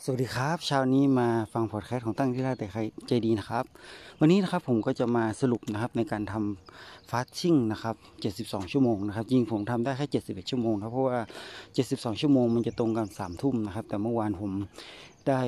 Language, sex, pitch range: Thai, male, 110-130 Hz